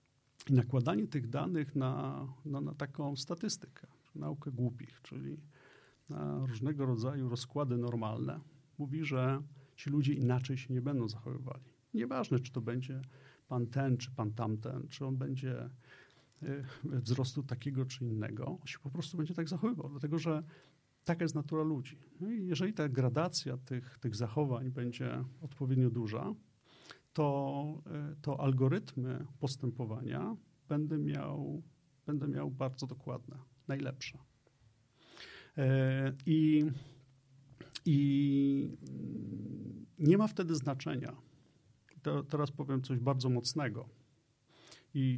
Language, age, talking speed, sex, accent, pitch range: Polish, 40-59, 120 wpm, male, native, 125-150 Hz